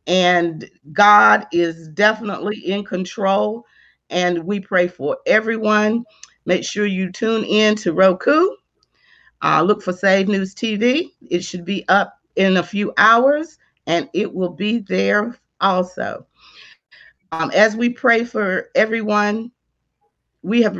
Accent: American